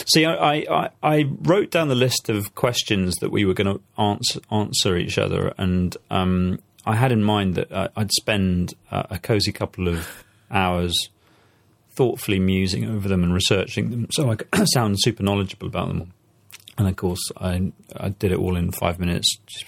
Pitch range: 90-110 Hz